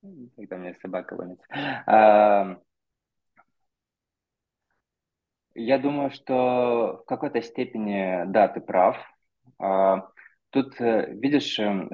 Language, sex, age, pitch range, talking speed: Russian, male, 20-39, 95-110 Hz, 80 wpm